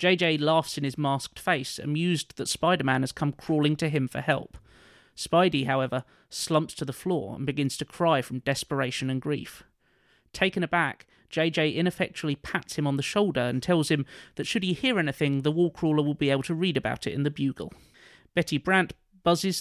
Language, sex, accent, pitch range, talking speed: English, male, British, 140-170 Hz, 195 wpm